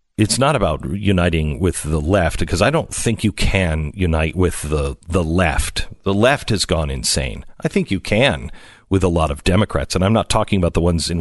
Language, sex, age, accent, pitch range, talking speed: English, male, 50-69, American, 85-135 Hz, 215 wpm